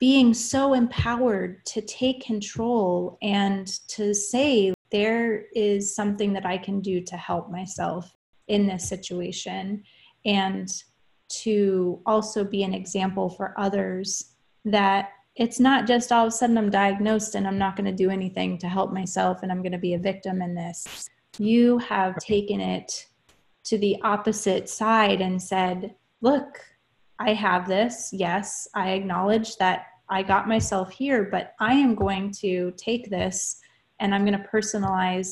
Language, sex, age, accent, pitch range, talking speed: English, female, 20-39, American, 185-210 Hz, 160 wpm